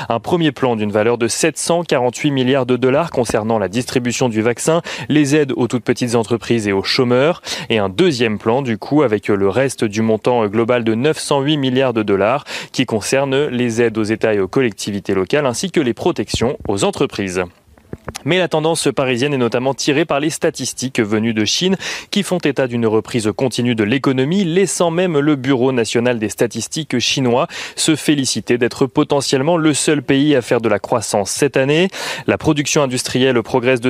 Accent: French